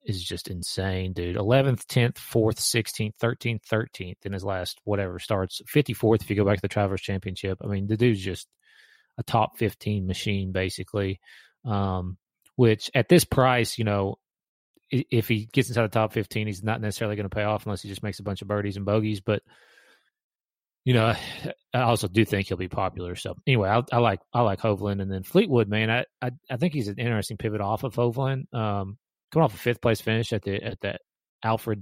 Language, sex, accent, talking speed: English, male, American, 205 wpm